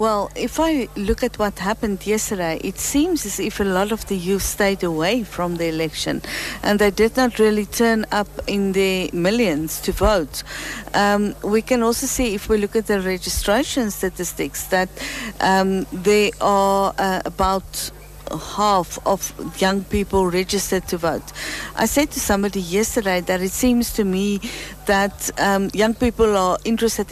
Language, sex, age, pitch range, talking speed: English, female, 60-79, 190-225 Hz, 165 wpm